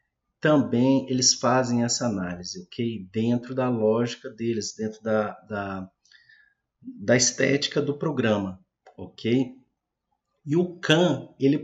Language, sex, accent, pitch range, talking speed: Portuguese, male, Brazilian, 120-150 Hz, 115 wpm